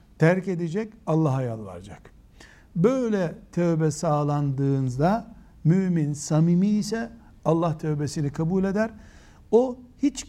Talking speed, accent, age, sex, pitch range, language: 95 wpm, native, 60-79, male, 125-180 Hz, Turkish